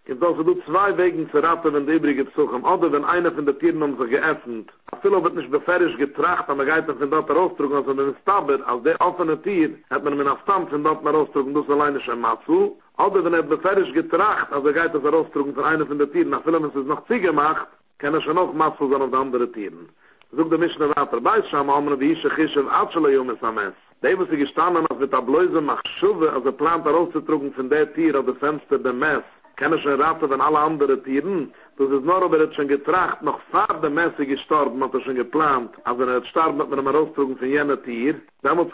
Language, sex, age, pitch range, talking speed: English, male, 60-79, 145-180 Hz, 235 wpm